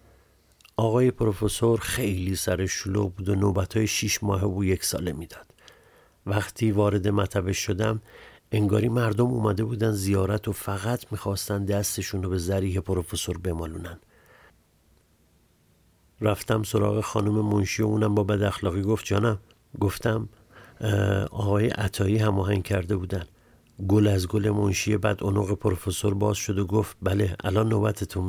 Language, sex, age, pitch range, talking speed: Persian, male, 50-69, 95-105 Hz, 125 wpm